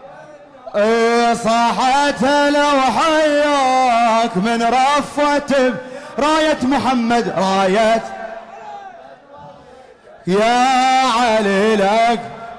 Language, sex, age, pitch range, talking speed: English, male, 30-49, 235-290 Hz, 55 wpm